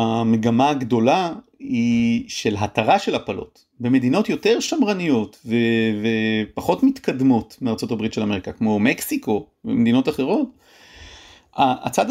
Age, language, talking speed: 40-59, Hebrew, 105 wpm